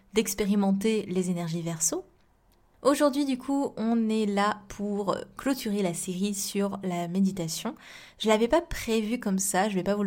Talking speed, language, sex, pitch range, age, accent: 165 wpm, French, female, 185-215 Hz, 20-39, French